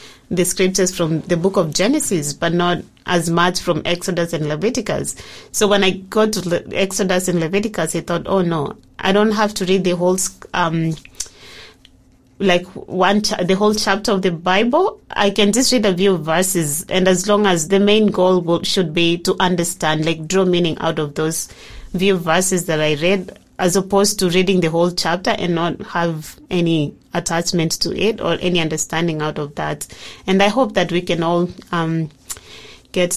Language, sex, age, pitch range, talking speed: English, female, 30-49, 170-205 Hz, 185 wpm